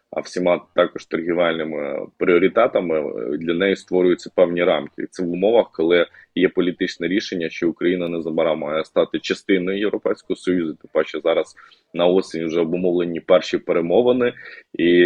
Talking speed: 145 wpm